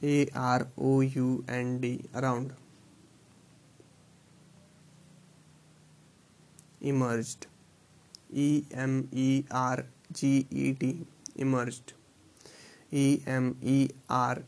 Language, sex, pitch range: English, male, 125-140 Hz